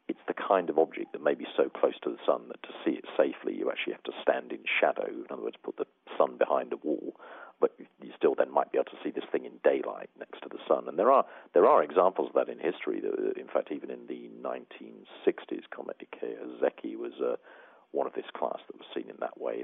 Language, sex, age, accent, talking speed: English, male, 50-69, British, 255 wpm